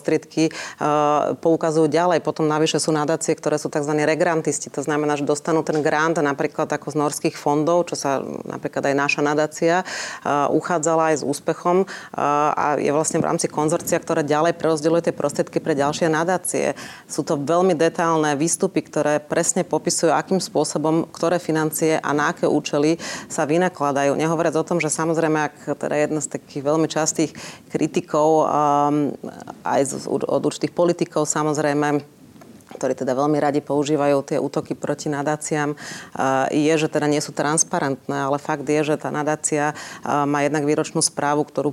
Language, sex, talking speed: Slovak, female, 165 wpm